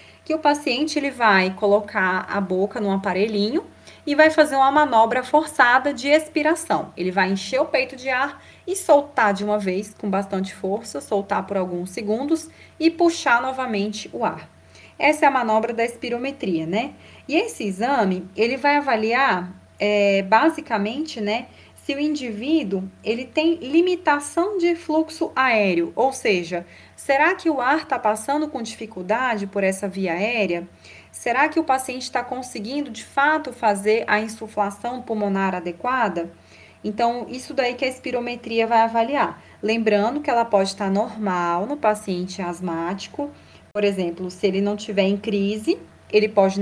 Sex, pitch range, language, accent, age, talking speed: female, 200-275 Hz, Portuguese, Brazilian, 20-39, 155 wpm